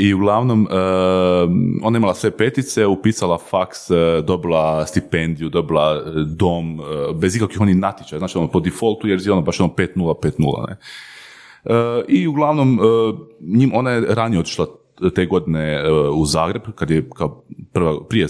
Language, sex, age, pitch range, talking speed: Croatian, male, 30-49, 85-115 Hz, 130 wpm